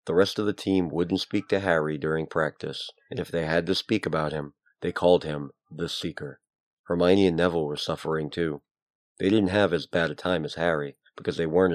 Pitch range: 75-95 Hz